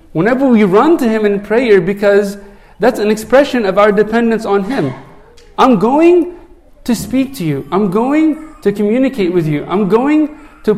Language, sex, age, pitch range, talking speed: English, male, 40-59, 170-230 Hz, 175 wpm